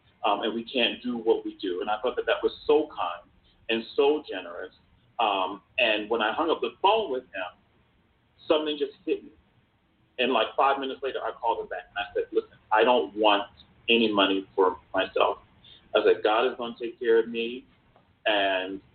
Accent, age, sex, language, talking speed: American, 40-59, male, English, 205 wpm